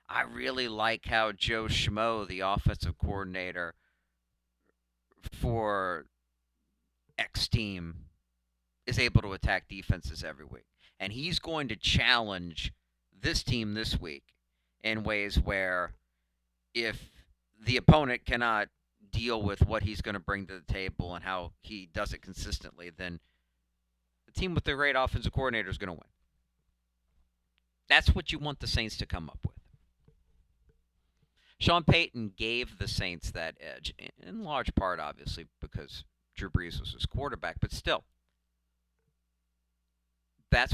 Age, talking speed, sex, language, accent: 50-69, 135 wpm, male, English, American